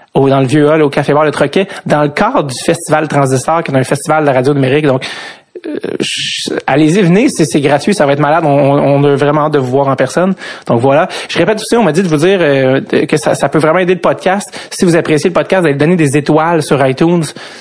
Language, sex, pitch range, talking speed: French, male, 140-170 Hz, 260 wpm